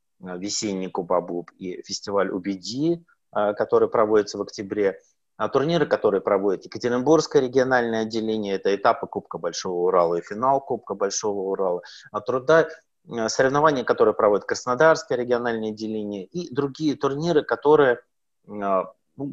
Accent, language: native, Russian